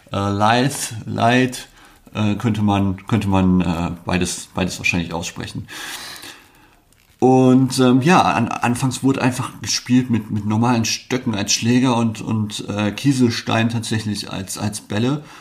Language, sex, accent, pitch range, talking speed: German, male, German, 95-115 Hz, 135 wpm